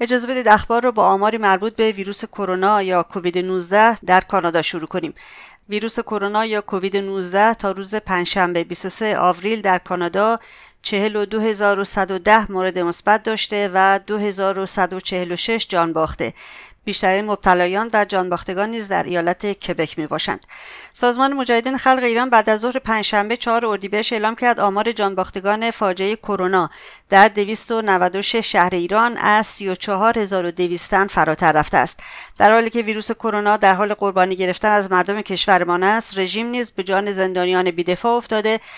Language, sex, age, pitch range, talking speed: English, female, 50-69, 185-215 Hz, 140 wpm